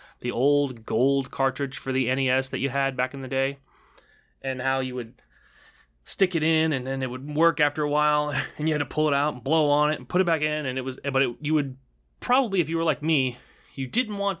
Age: 20-39